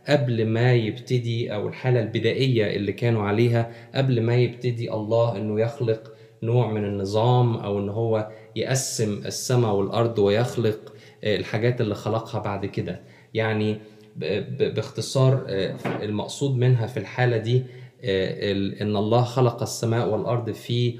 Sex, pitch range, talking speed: male, 110-125 Hz, 125 wpm